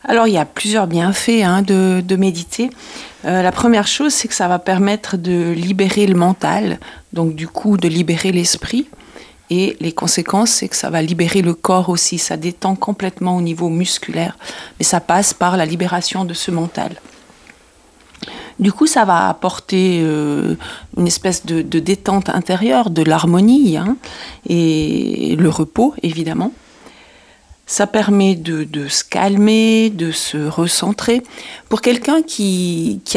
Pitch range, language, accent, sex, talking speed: 175-225 Hz, French, French, female, 155 wpm